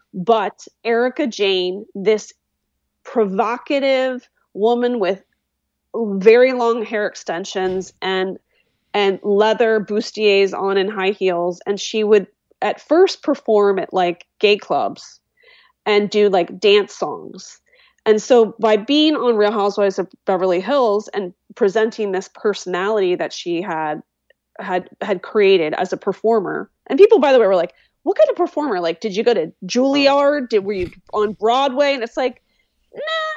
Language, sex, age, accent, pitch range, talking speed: English, female, 30-49, American, 195-275 Hz, 150 wpm